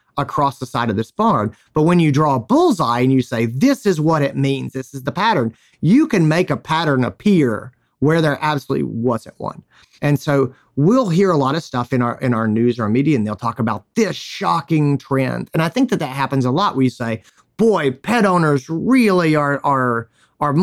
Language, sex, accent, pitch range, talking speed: English, male, American, 125-170 Hz, 215 wpm